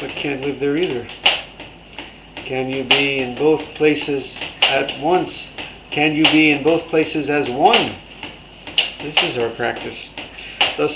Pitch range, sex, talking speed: 140-175 Hz, male, 140 wpm